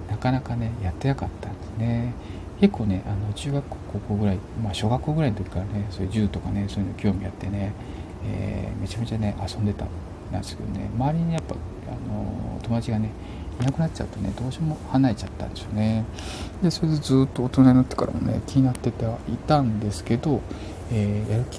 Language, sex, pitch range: Japanese, male, 95-125 Hz